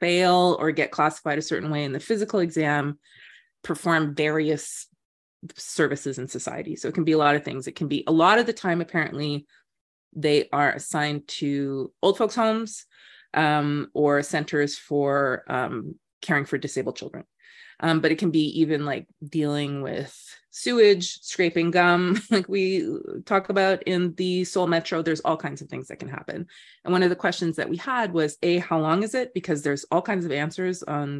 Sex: female